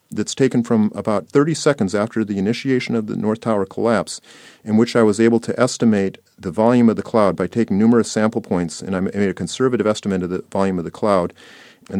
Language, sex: English, male